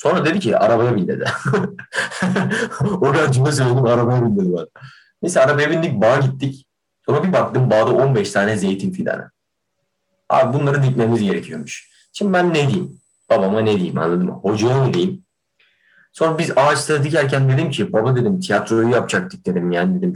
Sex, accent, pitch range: male, native, 115-145 Hz